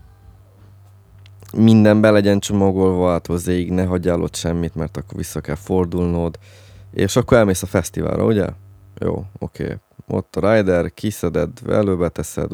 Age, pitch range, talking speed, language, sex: 20-39, 90-105 Hz, 135 wpm, Hungarian, male